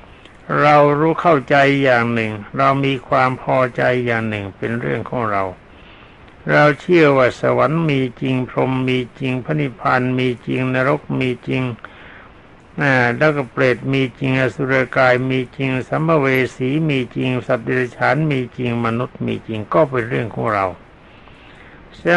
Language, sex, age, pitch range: Thai, male, 60-79, 120-150 Hz